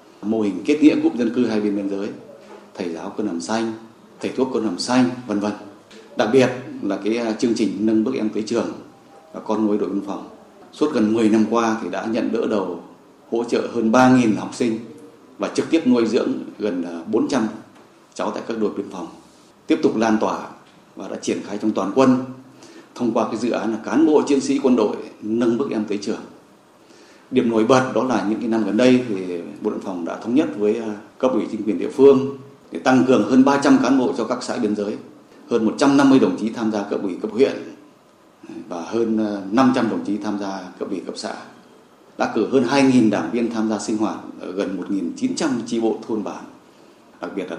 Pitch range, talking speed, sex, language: 105-125 Hz, 230 wpm, male, Vietnamese